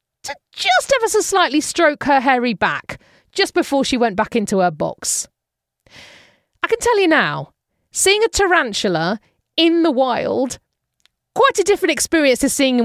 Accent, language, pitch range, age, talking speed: British, English, 210-310 Hz, 40-59, 155 wpm